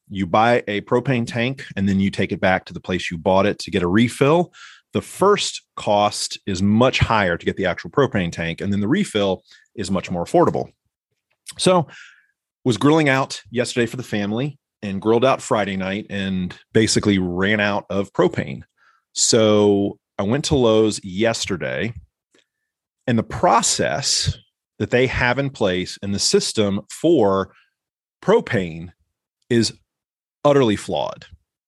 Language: English